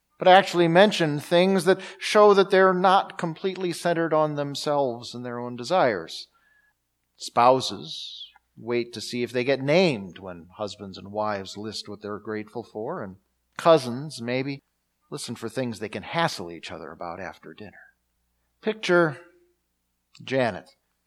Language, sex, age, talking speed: English, male, 50-69, 140 wpm